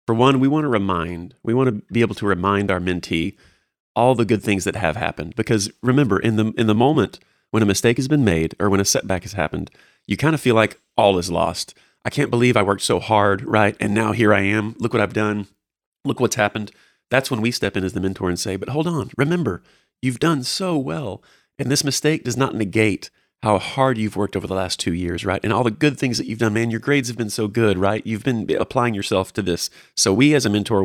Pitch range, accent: 100-125 Hz, American